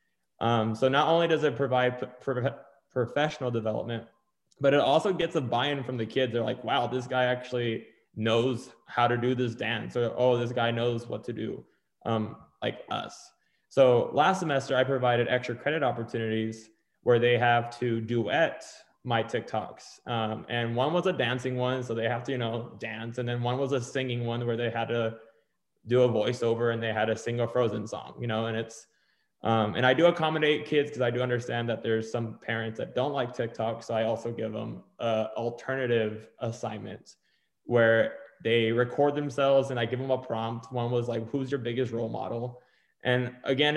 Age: 20-39